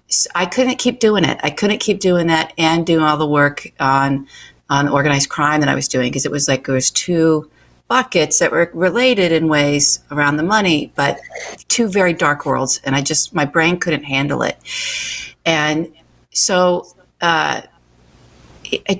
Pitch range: 155-195 Hz